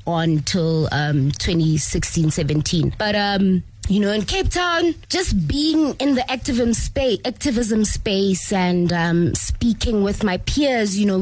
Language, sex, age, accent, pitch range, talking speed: English, female, 20-39, South African, 170-215 Hz, 145 wpm